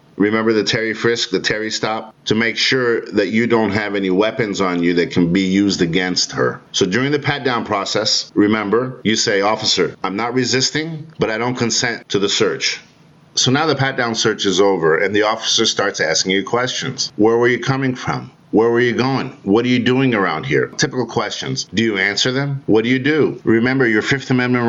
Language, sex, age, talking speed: English, male, 50-69, 210 wpm